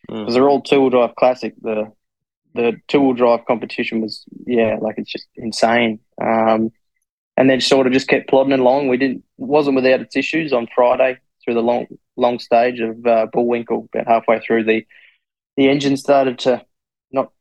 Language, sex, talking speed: English, male, 175 wpm